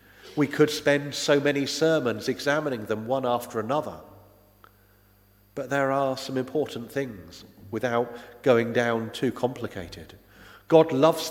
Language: English